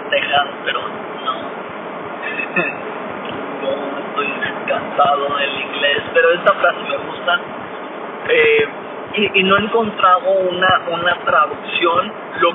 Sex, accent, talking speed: male, Mexican, 105 wpm